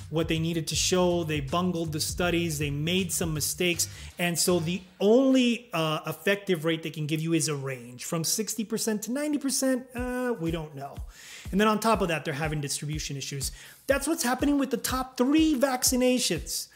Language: English